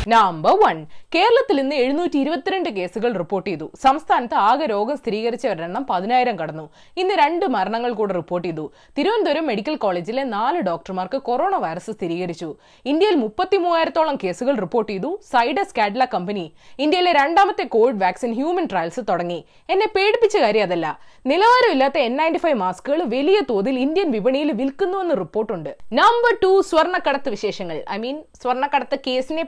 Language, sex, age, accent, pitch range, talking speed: Malayalam, female, 20-39, native, 215-350 Hz, 125 wpm